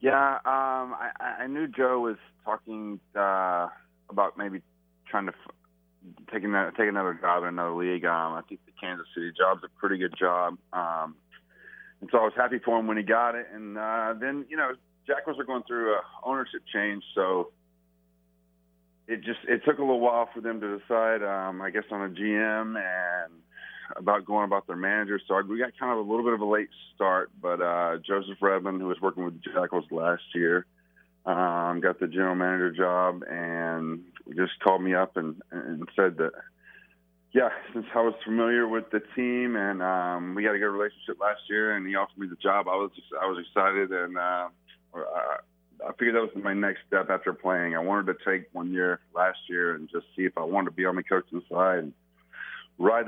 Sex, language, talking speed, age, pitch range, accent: male, English, 205 wpm, 30-49, 85-110 Hz, American